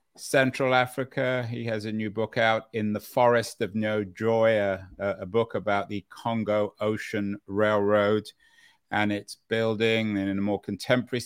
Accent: British